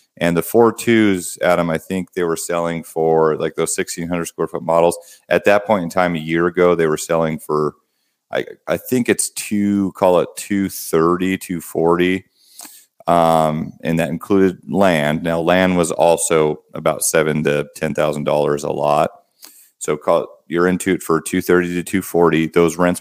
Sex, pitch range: male, 80-90 Hz